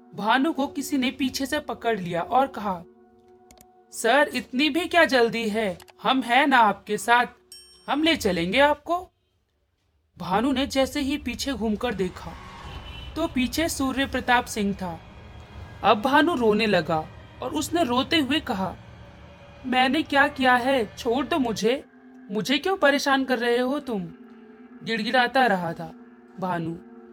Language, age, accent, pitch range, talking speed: Hindi, 40-59, native, 185-270 Hz, 145 wpm